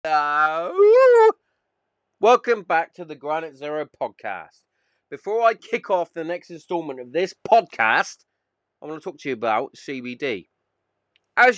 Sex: male